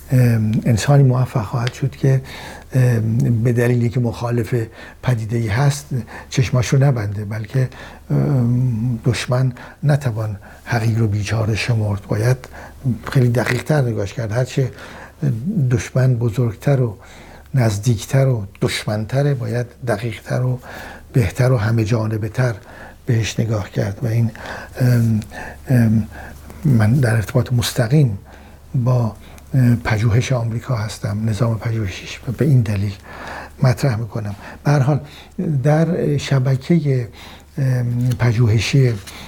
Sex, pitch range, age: male, 110-130 Hz, 60-79